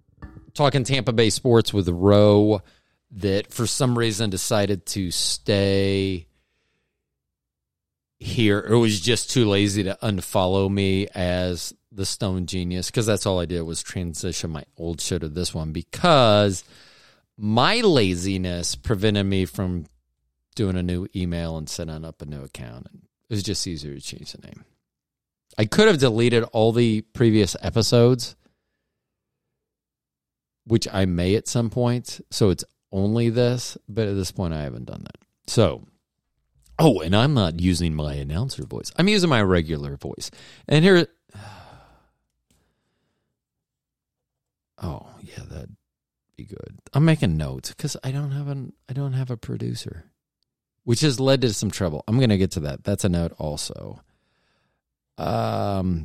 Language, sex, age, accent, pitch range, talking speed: English, male, 40-59, American, 85-115 Hz, 150 wpm